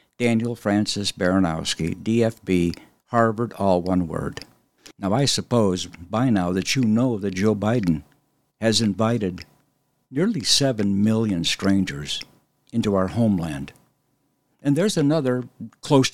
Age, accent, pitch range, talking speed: 60-79, American, 100-135 Hz, 120 wpm